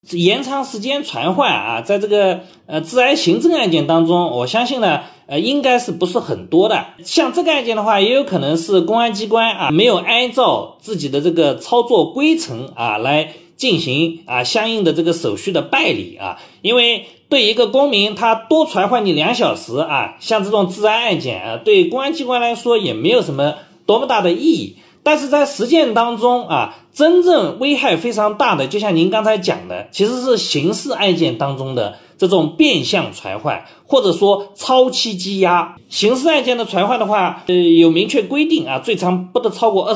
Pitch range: 175-260 Hz